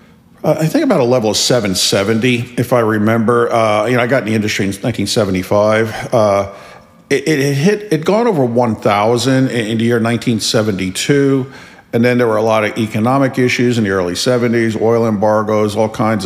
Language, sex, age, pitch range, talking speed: English, male, 50-69, 100-125 Hz, 185 wpm